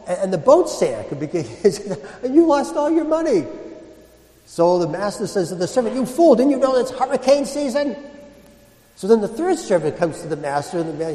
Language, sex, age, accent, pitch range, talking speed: English, male, 60-79, American, 155-245 Hz, 200 wpm